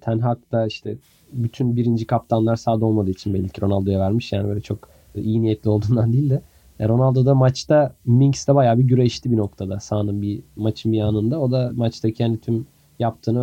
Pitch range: 115-145 Hz